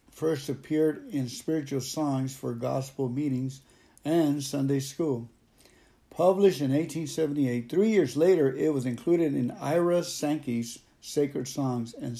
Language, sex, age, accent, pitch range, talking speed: English, male, 60-79, American, 130-155 Hz, 130 wpm